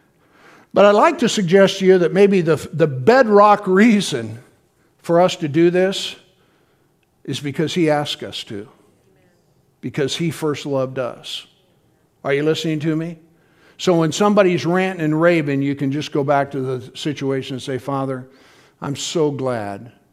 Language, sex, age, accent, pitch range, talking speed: English, male, 60-79, American, 130-170 Hz, 160 wpm